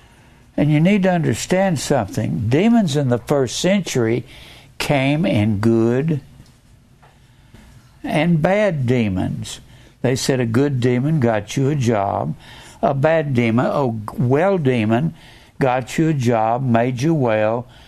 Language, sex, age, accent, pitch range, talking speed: English, male, 60-79, American, 120-160 Hz, 130 wpm